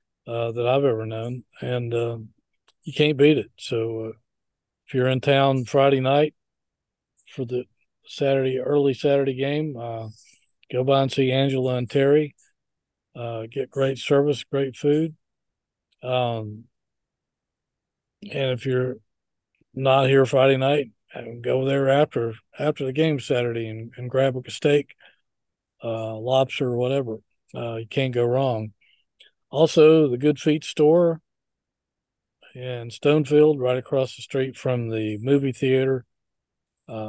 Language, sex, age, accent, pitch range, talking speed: English, male, 50-69, American, 115-135 Hz, 135 wpm